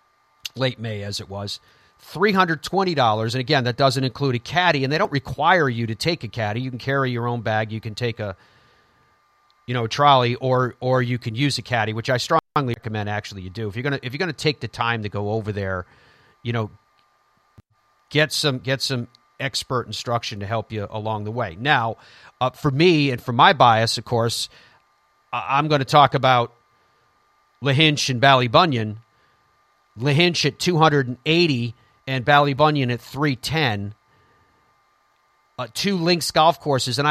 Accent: American